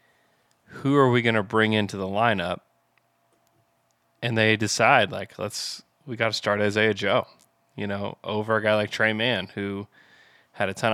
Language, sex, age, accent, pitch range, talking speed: English, male, 20-39, American, 105-120 Hz, 175 wpm